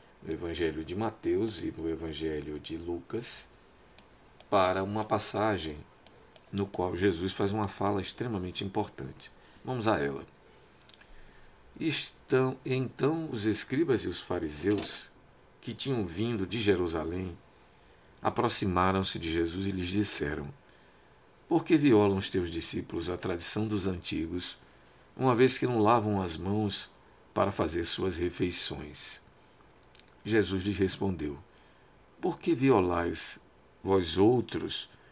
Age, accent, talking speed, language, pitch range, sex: 50-69, Brazilian, 120 wpm, Portuguese, 90-110 Hz, male